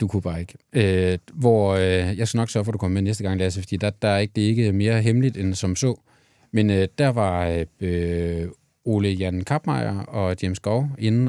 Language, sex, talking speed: Danish, male, 245 wpm